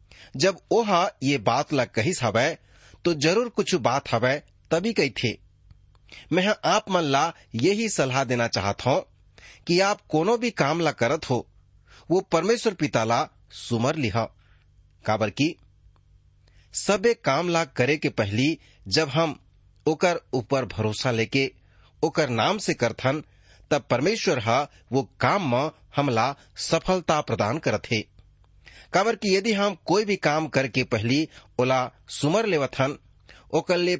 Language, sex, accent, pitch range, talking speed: English, male, Indian, 110-160 Hz, 130 wpm